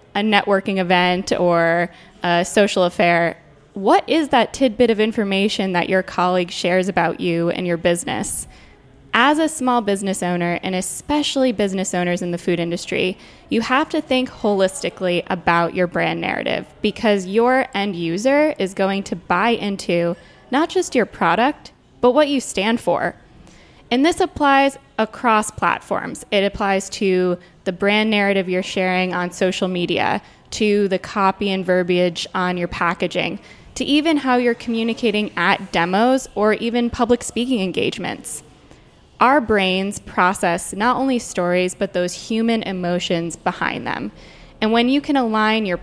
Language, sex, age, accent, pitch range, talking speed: English, female, 10-29, American, 180-235 Hz, 150 wpm